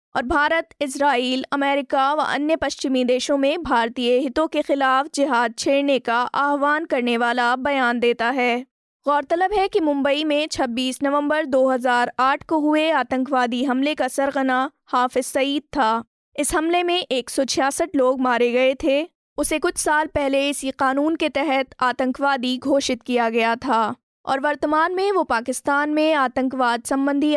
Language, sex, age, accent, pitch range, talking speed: Hindi, female, 20-39, native, 250-290 Hz, 150 wpm